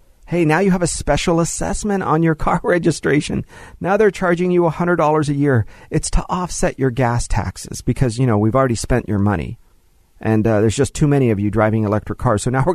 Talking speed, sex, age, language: 215 wpm, male, 40-59, English